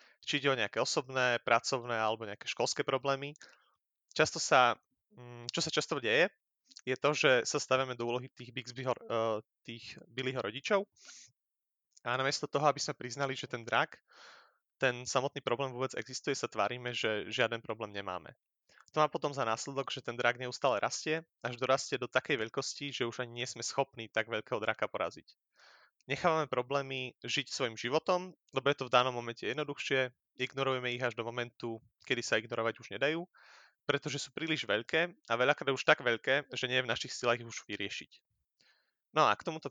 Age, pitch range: 30-49, 120-140 Hz